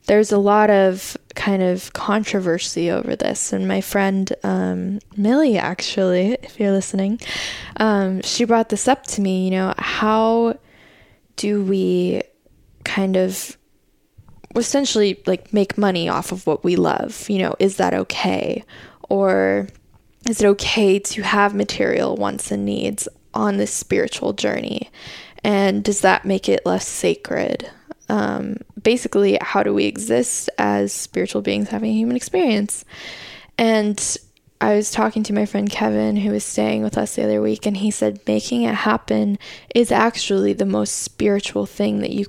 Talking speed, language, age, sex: 155 wpm, English, 10-29, female